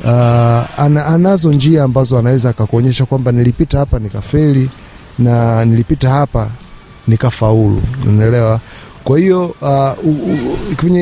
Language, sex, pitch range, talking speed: Swahili, male, 110-140 Hz, 100 wpm